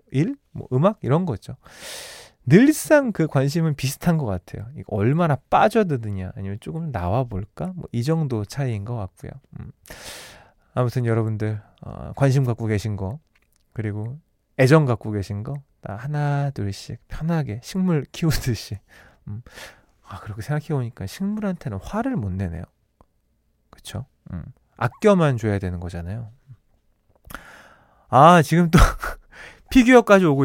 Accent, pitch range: native, 115-170 Hz